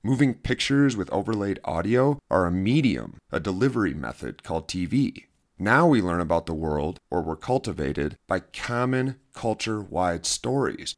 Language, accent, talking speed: English, American, 140 wpm